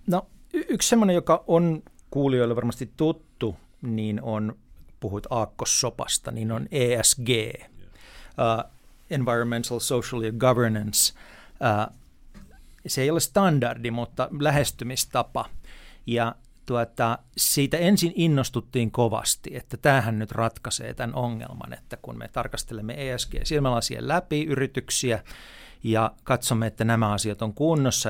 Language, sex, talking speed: Finnish, male, 115 wpm